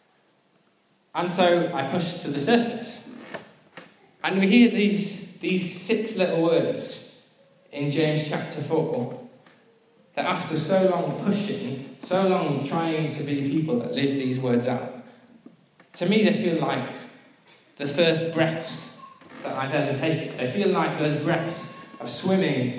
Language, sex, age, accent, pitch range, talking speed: English, male, 20-39, British, 145-185 Hz, 140 wpm